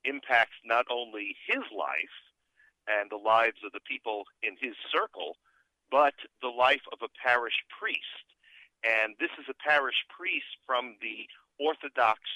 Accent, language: American, English